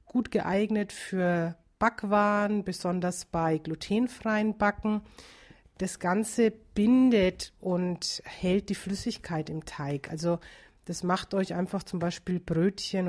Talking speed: 115 wpm